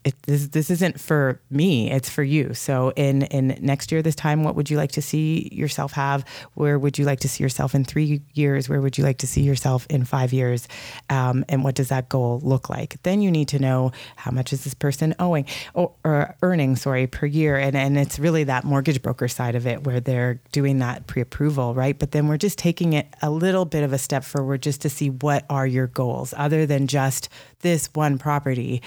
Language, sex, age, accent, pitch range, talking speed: English, female, 30-49, American, 130-145 Hz, 230 wpm